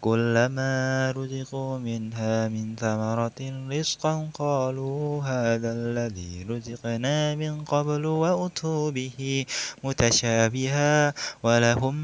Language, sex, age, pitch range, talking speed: Indonesian, male, 20-39, 115-150 Hz, 80 wpm